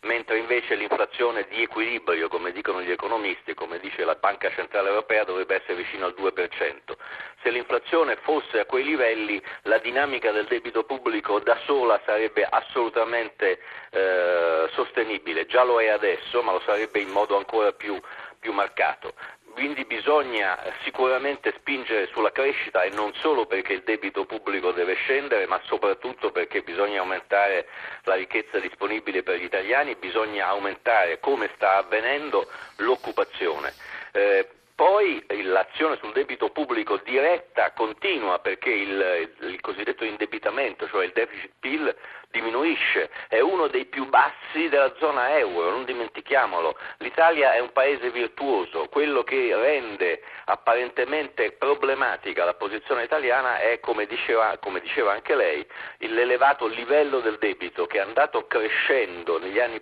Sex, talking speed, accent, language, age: male, 140 wpm, native, Italian, 40-59